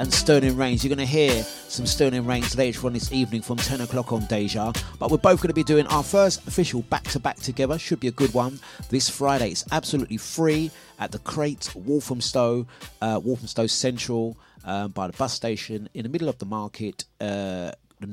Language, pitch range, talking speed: English, 105-140 Hz, 200 wpm